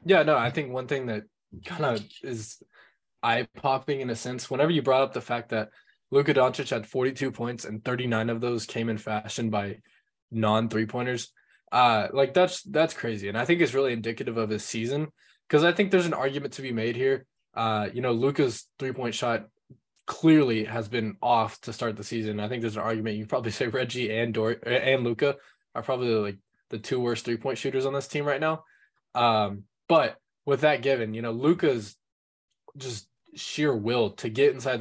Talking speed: 195 wpm